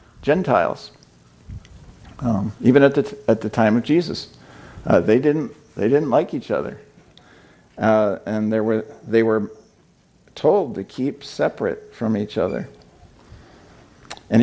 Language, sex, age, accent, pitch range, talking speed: English, male, 50-69, American, 105-125 Hz, 135 wpm